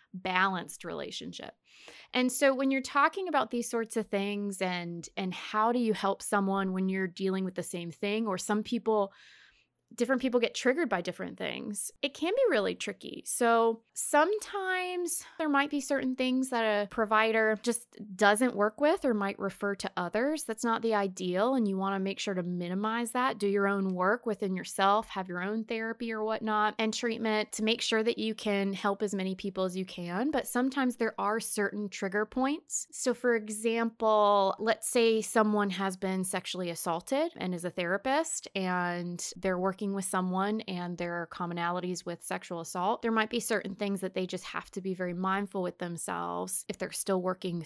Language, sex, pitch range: English, female, 190-240 Hz